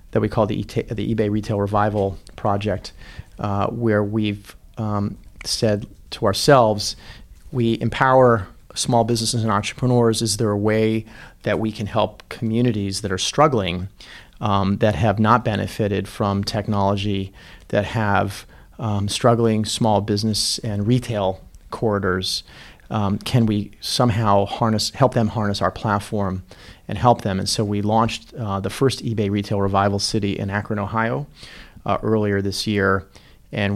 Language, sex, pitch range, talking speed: English, male, 100-115 Hz, 150 wpm